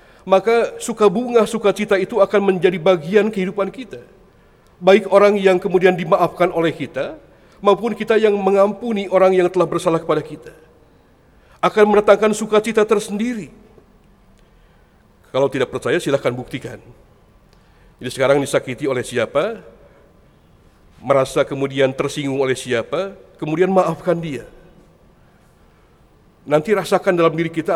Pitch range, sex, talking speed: 165-200 Hz, male, 120 wpm